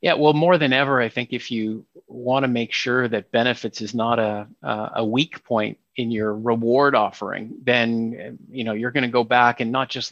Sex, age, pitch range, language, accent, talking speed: male, 50-69, 115-125 Hz, English, American, 215 wpm